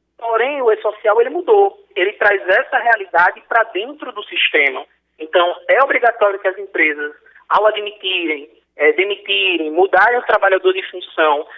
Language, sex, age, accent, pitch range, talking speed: Portuguese, male, 20-39, Brazilian, 190-310 Hz, 145 wpm